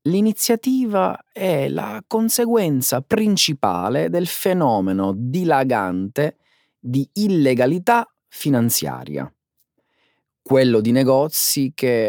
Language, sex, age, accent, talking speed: Italian, male, 30-49, native, 75 wpm